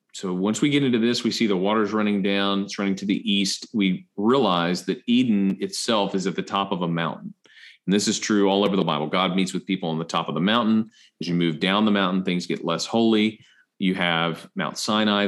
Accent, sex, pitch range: American, male, 85-100 Hz